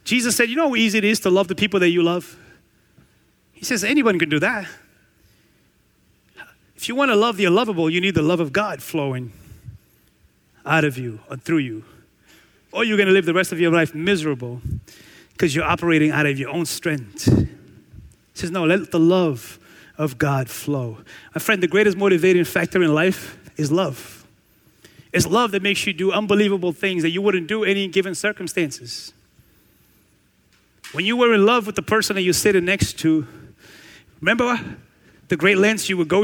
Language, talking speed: English, 190 wpm